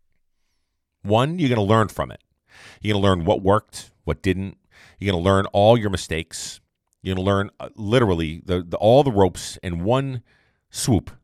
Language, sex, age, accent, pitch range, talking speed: English, male, 40-59, American, 85-115 Hz, 175 wpm